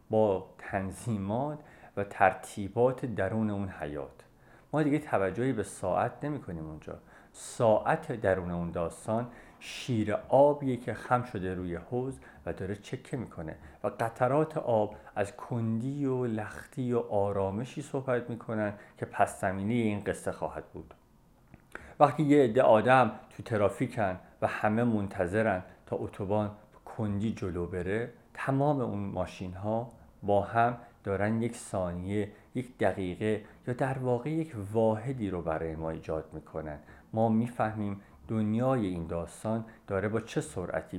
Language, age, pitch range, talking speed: Persian, 50-69, 90-120 Hz, 130 wpm